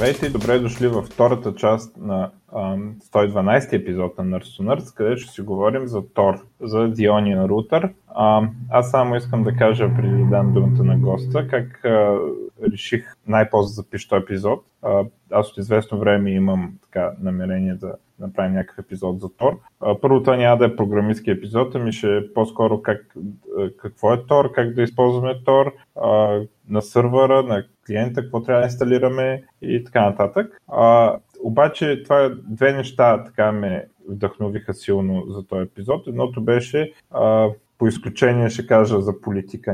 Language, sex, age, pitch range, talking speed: Bulgarian, male, 20-39, 100-130 Hz, 155 wpm